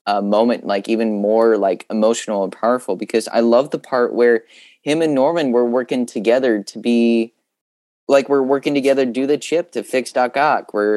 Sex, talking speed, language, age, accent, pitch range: male, 195 wpm, English, 20-39, American, 105-125 Hz